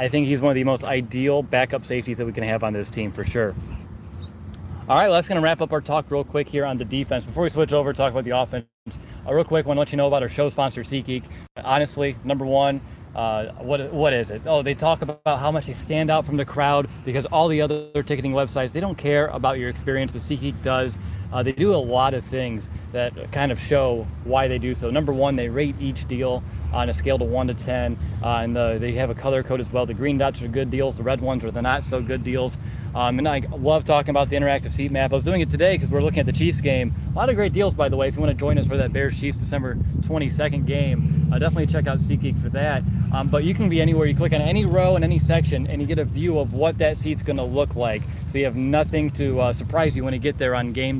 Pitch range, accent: 125-145 Hz, American